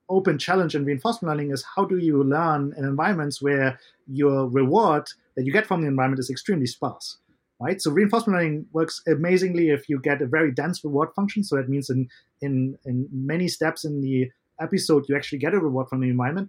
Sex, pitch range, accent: male, 135-170 Hz, German